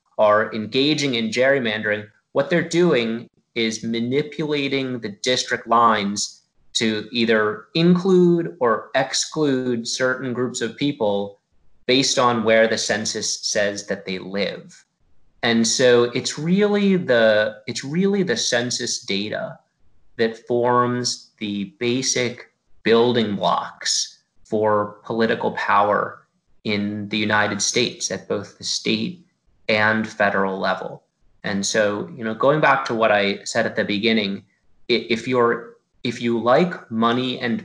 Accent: American